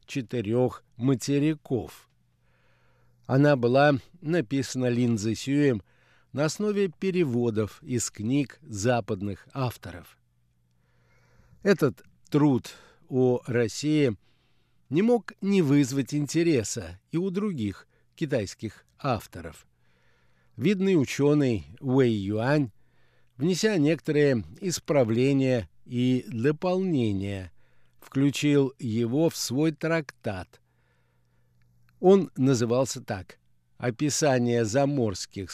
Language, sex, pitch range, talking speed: Russian, male, 110-150 Hz, 80 wpm